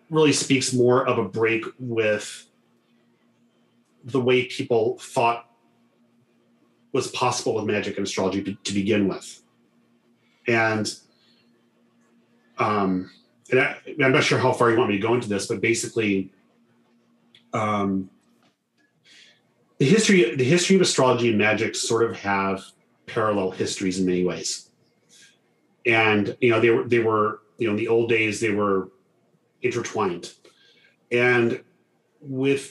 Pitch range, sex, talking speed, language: 100-120 Hz, male, 135 wpm, English